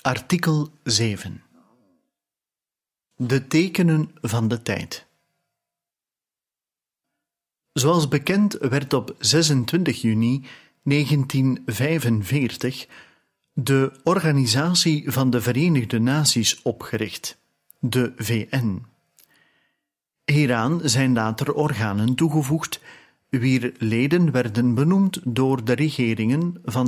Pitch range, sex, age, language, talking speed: 115-150 Hz, male, 40-59, Dutch, 80 wpm